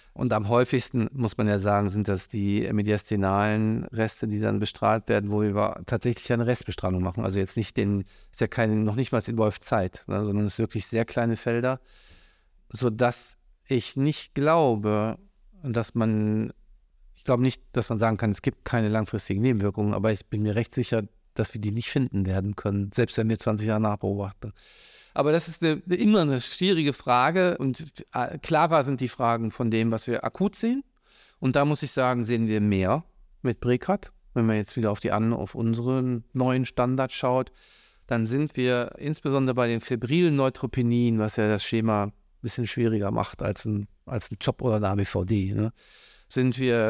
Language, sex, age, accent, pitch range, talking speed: German, male, 50-69, German, 105-130 Hz, 185 wpm